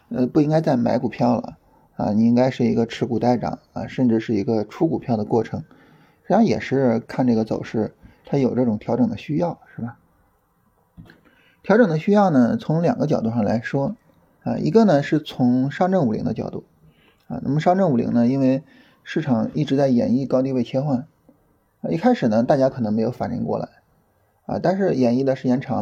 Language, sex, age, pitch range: Chinese, male, 20-39, 120-190 Hz